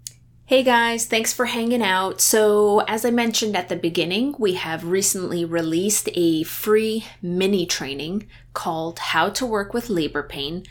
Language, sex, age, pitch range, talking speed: English, female, 20-39, 175-235 Hz, 155 wpm